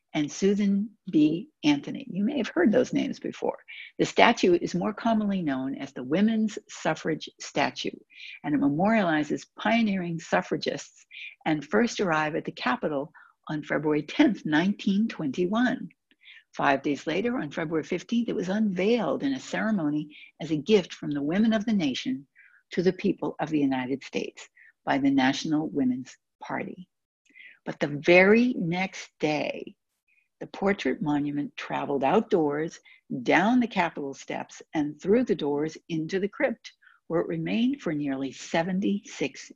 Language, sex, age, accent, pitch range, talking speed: English, female, 60-79, American, 155-230 Hz, 145 wpm